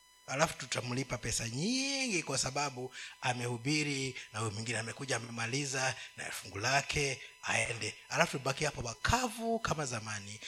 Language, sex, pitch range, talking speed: Swahili, male, 115-160 Hz, 125 wpm